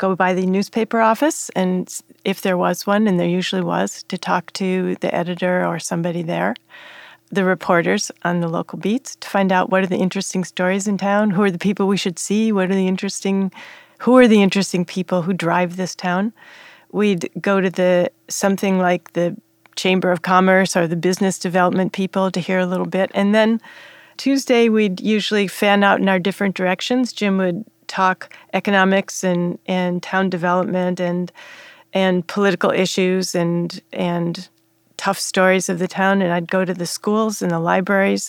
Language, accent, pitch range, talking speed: English, American, 180-205 Hz, 185 wpm